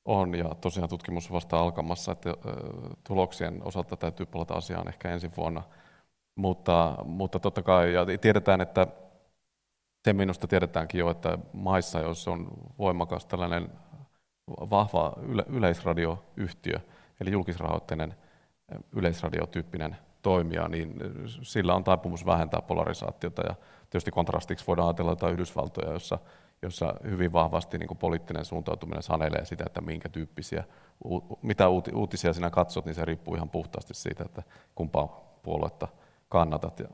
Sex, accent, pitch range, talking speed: male, native, 80-95 Hz, 125 wpm